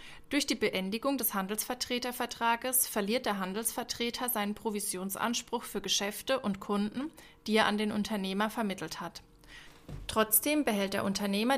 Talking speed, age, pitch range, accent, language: 130 wpm, 20-39, 195-255 Hz, German, German